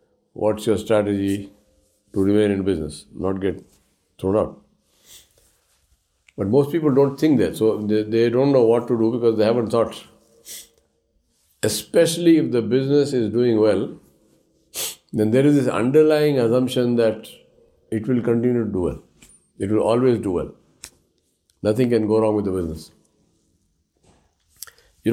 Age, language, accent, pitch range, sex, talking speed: 50-69, English, Indian, 110-140 Hz, male, 150 wpm